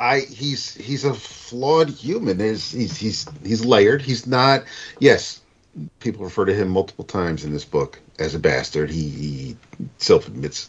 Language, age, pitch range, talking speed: English, 50-69, 95-130 Hz, 170 wpm